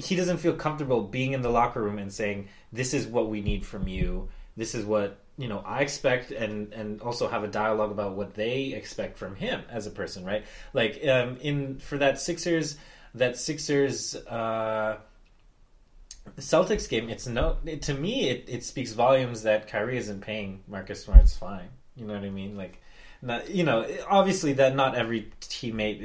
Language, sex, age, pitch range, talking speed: English, male, 20-39, 105-135 Hz, 185 wpm